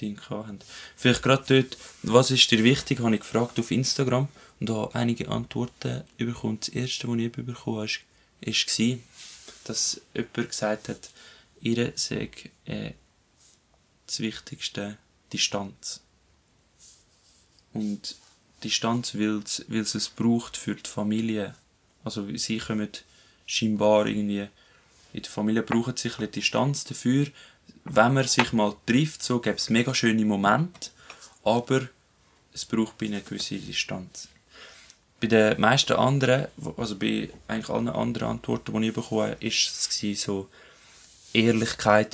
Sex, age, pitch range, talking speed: male, 20-39, 105-120 Hz, 130 wpm